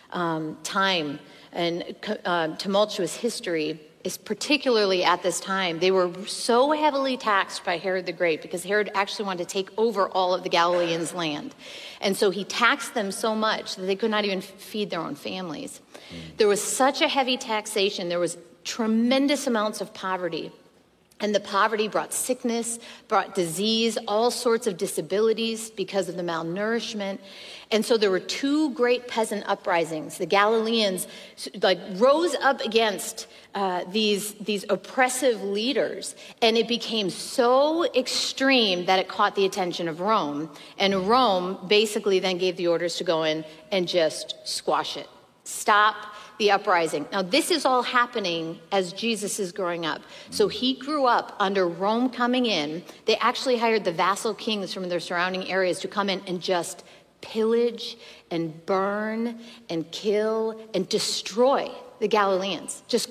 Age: 40-59